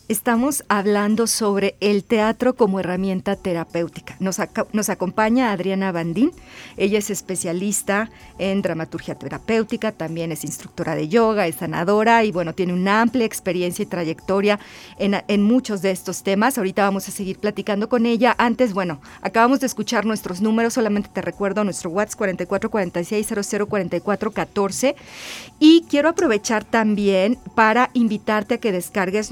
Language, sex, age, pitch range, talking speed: Spanish, female, 40-59, 190-230 Hz, 145 wpm